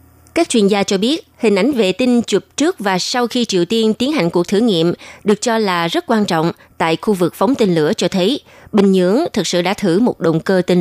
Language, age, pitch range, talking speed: Vietnamese, 20-39, 170-225 Hz, 250 wpm